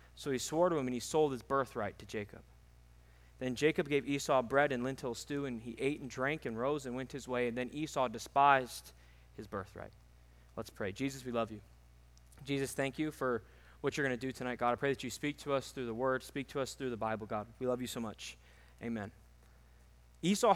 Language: English